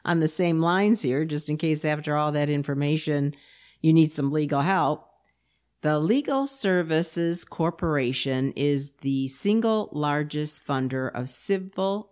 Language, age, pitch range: English, 50-69, 135-175 Hz